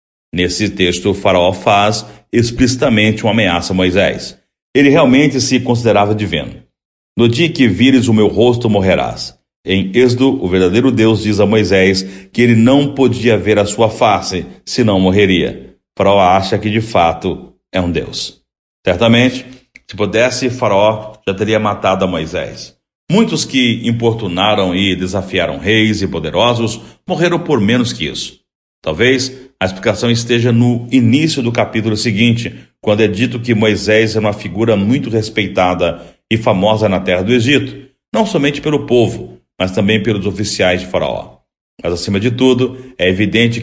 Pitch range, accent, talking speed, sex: 95-120 Hz, Brazilian, 155 wpm, male